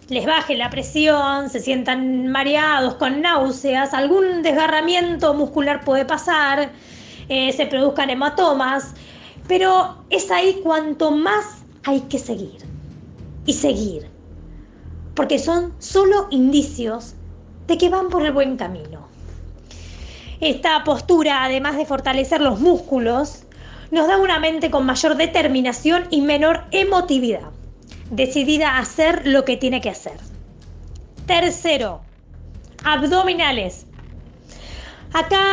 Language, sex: Spanish, female